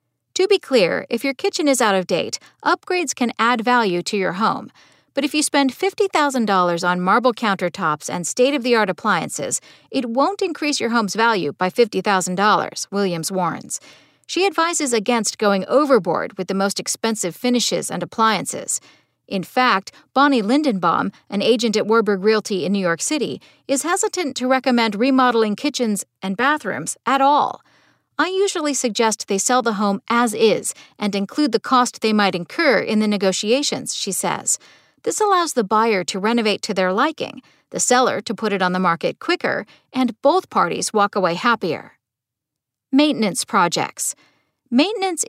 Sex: female